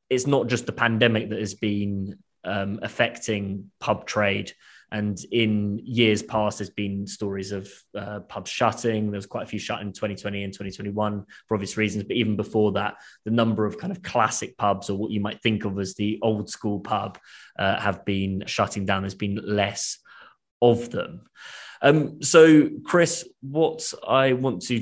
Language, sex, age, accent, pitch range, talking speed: English, male, 20-39, British, 105-120 Hz, 180 wpm